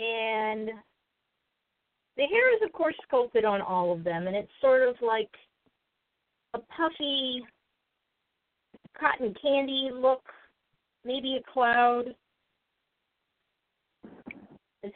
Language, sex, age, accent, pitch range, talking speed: English, female, 40-59, American, 220-300 Hz, 100 wpm